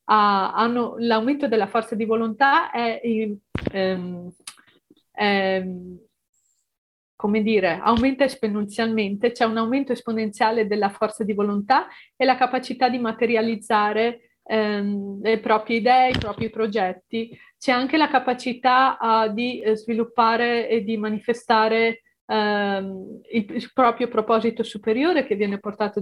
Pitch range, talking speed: 200-240 Hz, 120 wpm